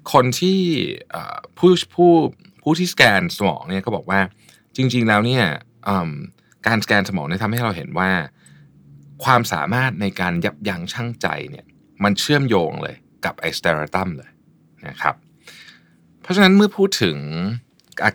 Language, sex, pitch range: Thai, male, 85-130 Hz